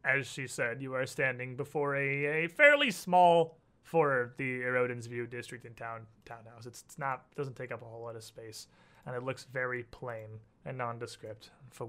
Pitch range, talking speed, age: 125-160 Hz, 195 wpm, 30-49